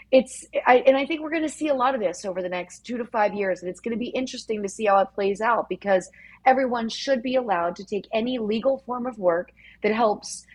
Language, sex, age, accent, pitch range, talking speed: English, female, 30-49, American, 190-250 Hz, 255 wpm